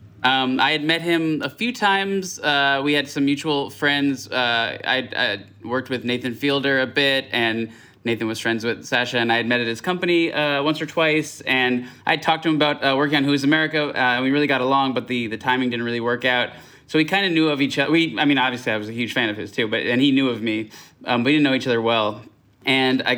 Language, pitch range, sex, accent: English, 120-145 Hz, male, American